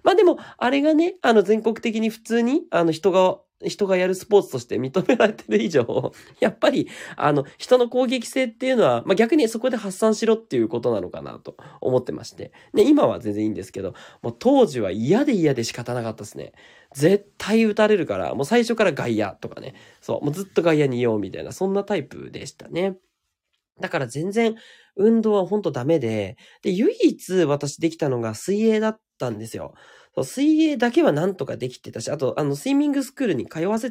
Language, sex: Japanese, male